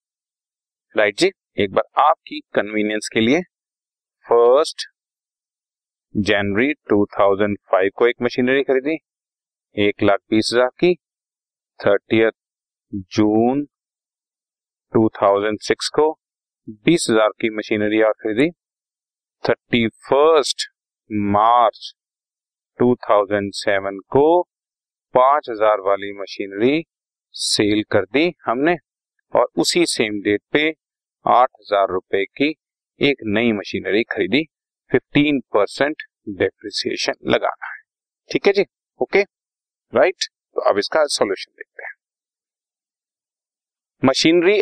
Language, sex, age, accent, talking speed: Hindi, male, 40-59, native, 90 wpm